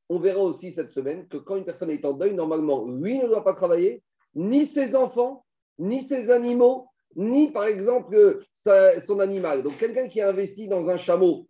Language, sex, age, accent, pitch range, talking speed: French, male, 40-59, French, 165-260 Hz, 200 wpm